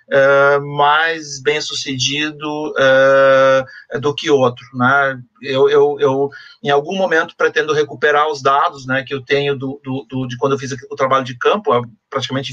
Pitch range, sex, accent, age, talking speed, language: 140-180 Hz, male, Brazilian, 40-59, 170 wpm, Portuguese